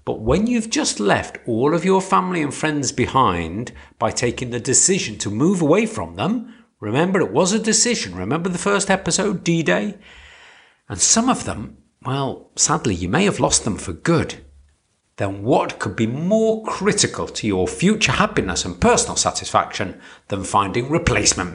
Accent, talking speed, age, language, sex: British, 170 wpm, 50-69, English, male